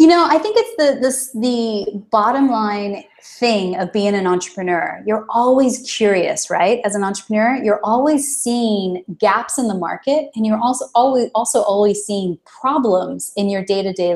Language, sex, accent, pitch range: English, female, American, 185-235 Hz